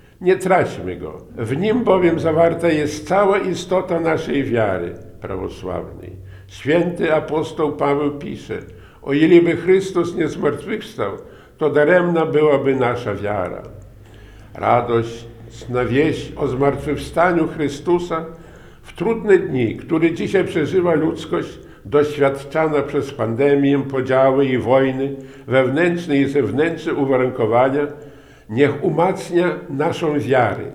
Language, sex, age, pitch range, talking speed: Polish, male, 50-69, 130-165 Hz, 105 wpm